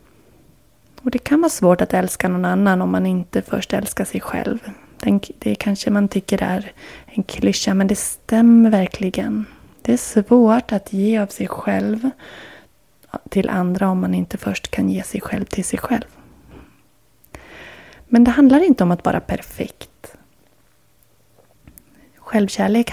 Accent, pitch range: native, 180-235 Hz